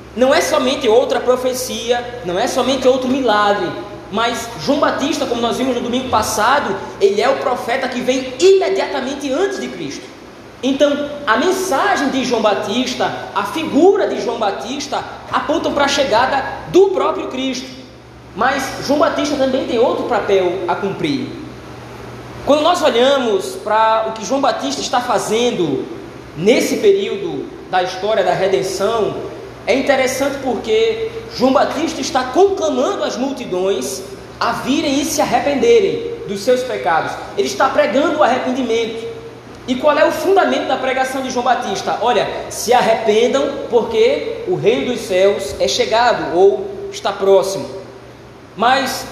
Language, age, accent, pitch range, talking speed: Portuguese, 20-39, Brazilian, 225-310 Hz, 145 wpm